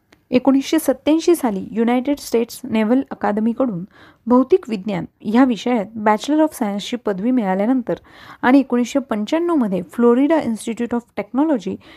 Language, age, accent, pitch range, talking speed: Marathi, 30-49, native, 210-260 Hz, 110 wpm